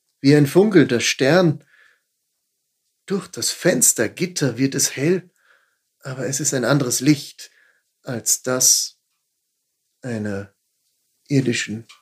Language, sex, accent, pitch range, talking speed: German, male, German, 120-160 Hz, 100 wpm